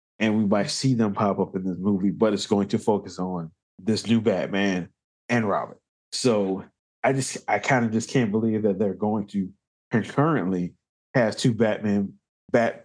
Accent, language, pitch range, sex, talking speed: American, English, 100-120 Hz, male, 180 wpm